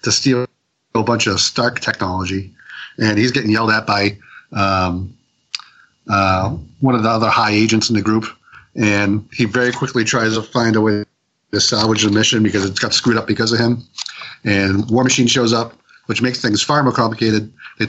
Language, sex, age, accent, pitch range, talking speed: English, male, 40-59, American, 105-125 Hz, 190 wpm